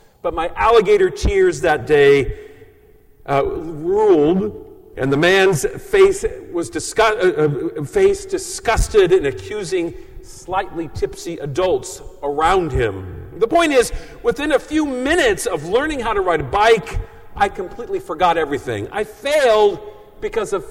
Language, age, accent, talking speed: English, 50-69, American, 135 wpm